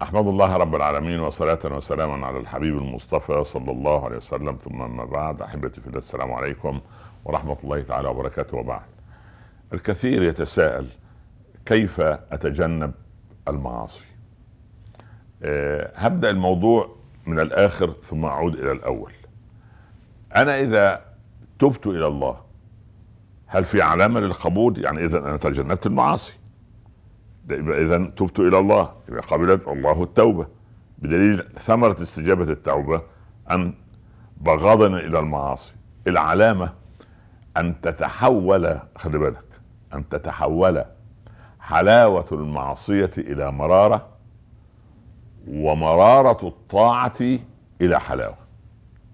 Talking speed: 105 wpm